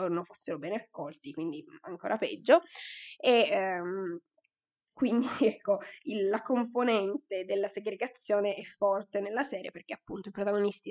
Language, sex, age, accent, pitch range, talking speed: Italian, female, 20-39, native, 185-230 Hz, 125 wpm